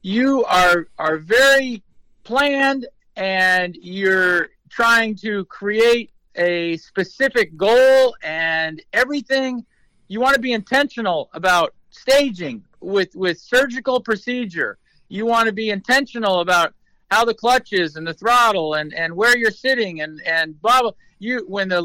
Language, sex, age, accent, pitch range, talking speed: English, male, 50-69, American, 180-250 Hz, 140 wpm